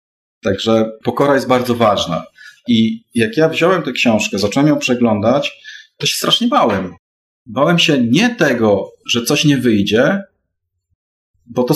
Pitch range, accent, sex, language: 110-155 Hz, native, male, Polish